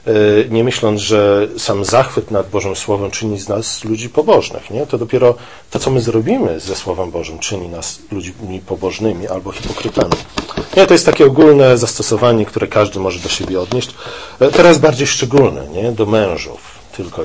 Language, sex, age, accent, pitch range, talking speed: Polish, male, 40-59, native, 105-145 Hz, 155 wpm